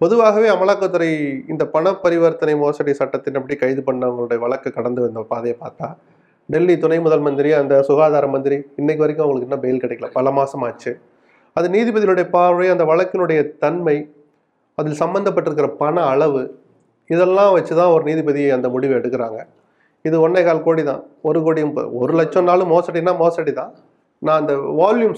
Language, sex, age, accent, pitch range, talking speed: Tamil, male, 30-49, native, 145-195 Hz, 150 wpm